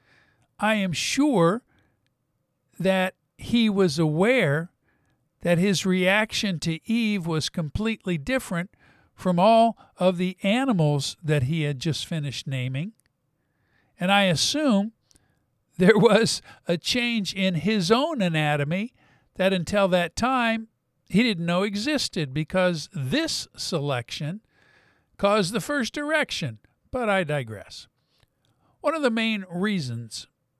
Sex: male